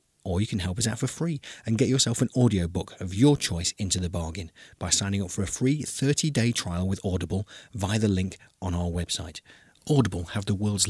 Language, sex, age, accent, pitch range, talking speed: English, male, 30-49, British, 90-120 Hz, 215 wpm